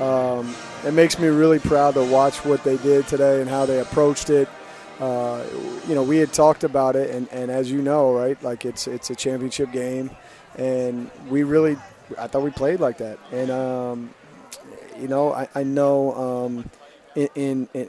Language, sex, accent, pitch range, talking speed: English, male, American, 125-145 Hz, 190 wpm